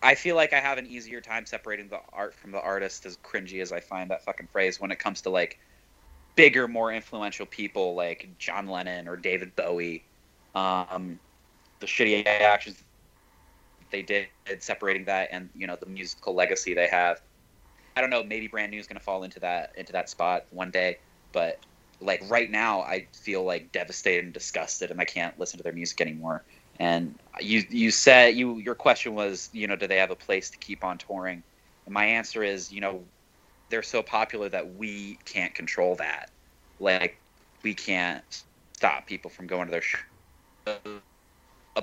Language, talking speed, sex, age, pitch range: English, 190 wpm, male, 20-39, 90-105 Hz